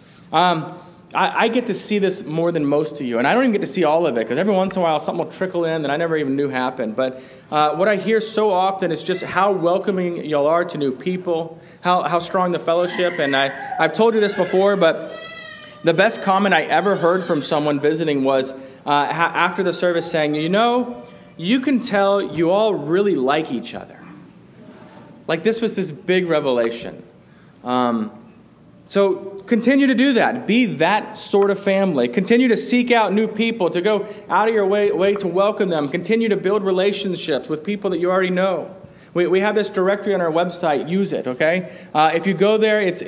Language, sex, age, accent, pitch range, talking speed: English, male, 30-49, American, 160-200 Hz, 215 wpm